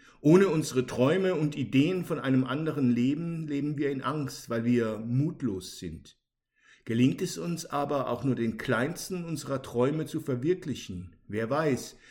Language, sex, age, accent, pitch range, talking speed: German, male, 50-69, German, 120-155 Hz, 155 wpm